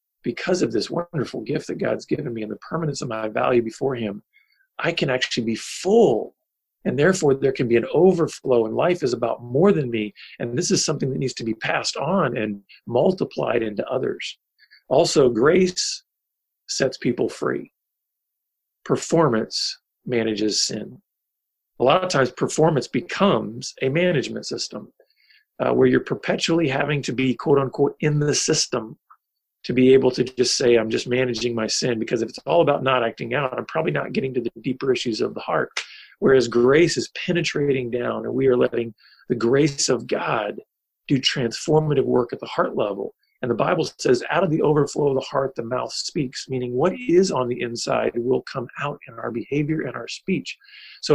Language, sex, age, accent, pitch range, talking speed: English, male, 40-59, American, 125-170 Hz, 185 wpm